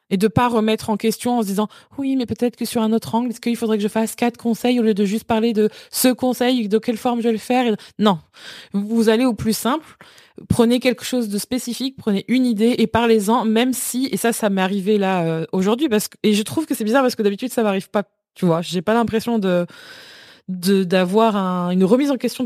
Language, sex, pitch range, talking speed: French, female, 195-245 Hz, 255 wpm